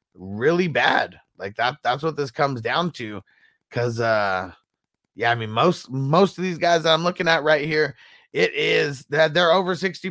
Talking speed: 185 wpm